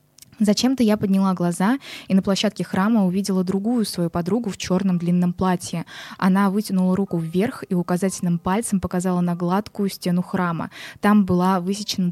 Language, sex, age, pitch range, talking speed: Russian, female, 20-39, 180-215 Hz, 155 wpm